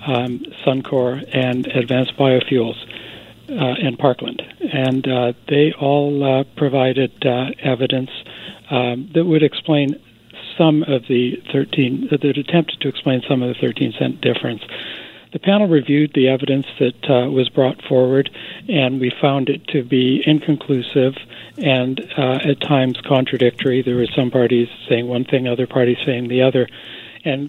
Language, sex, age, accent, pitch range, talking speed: English, male, 60-79, American, 125-145 Hz, 155 wpm